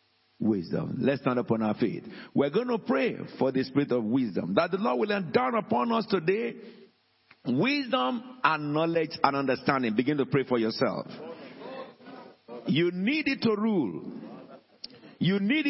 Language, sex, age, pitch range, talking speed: English, male, 50-69, 205-275 Hz, 155 wpm